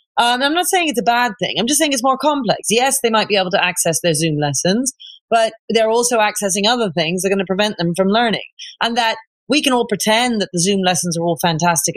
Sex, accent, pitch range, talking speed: female, British, 180-235 Hz, 255 wpm